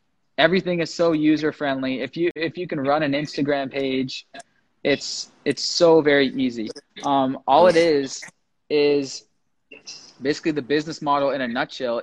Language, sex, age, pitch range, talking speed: English, male, 20-39, 130-155 Hz, 155 wpm